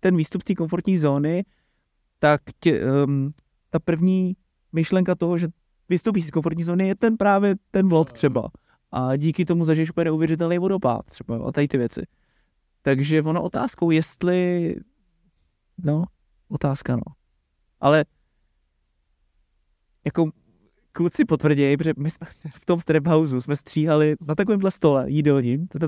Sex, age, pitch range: male, 20-39, 135-170 Hz